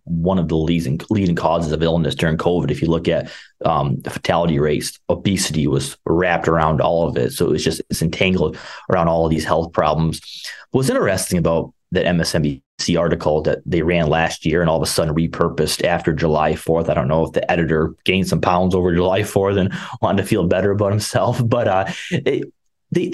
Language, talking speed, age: English, 205 wpm, 30-49